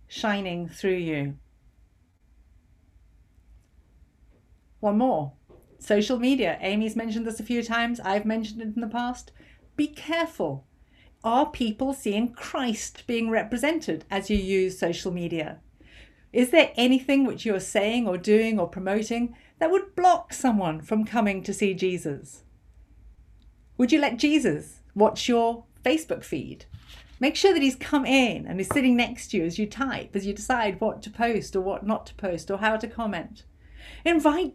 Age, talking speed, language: 50-69, 155 wpm, English